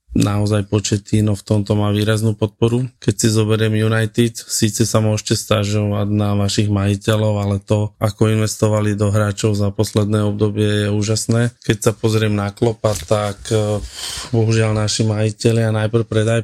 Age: 20-39